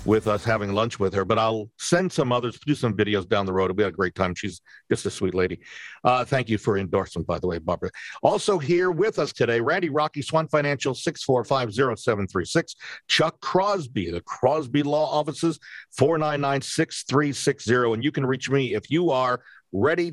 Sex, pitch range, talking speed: male, 110-150 Hz, 225 wpm